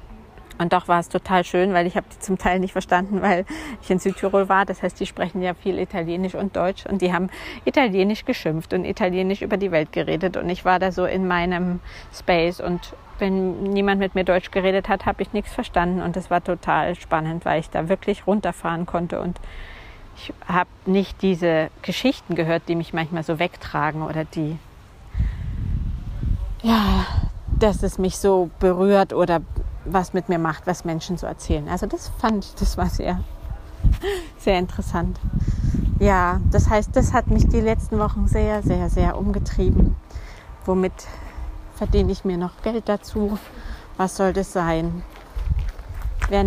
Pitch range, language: 150-190 Hz, German